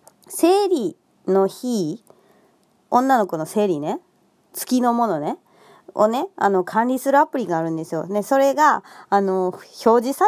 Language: Japanese